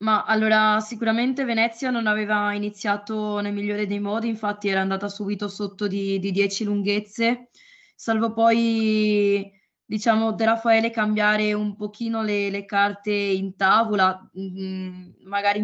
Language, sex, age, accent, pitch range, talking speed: Italian, female, 20-39, native, 200-225 Hz, 135 wpm